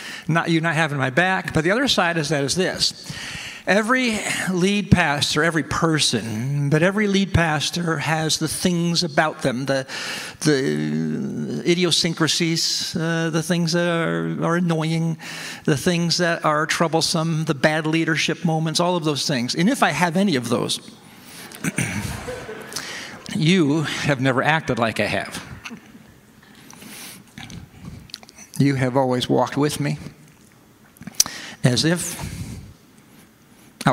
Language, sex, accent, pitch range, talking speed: English, male, American, 135-175 Hz, 130 wpm